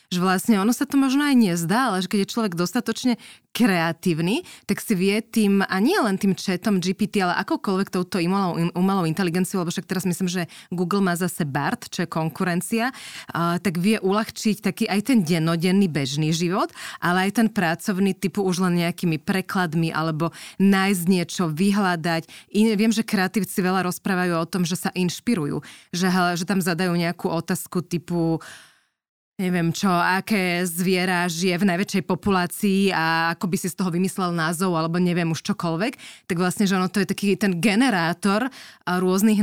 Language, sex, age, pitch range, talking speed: Slovak, female, 20-39, 170-200 Hz, 175 wpm